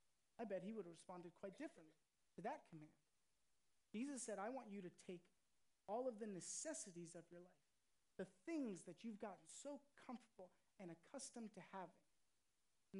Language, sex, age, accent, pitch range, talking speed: English, male, 30-49, American, 190-240 Hz, 170 wpm